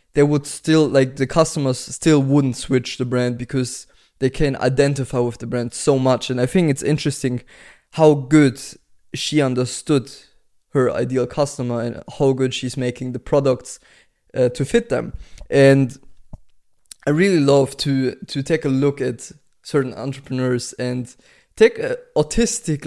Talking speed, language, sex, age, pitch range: 155 wpm, English, male, 20-39, 130-150 Hz